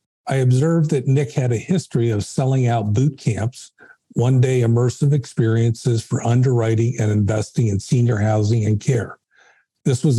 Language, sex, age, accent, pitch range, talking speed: English, male, 50-69, American, 115-135 Hz, 155 wpm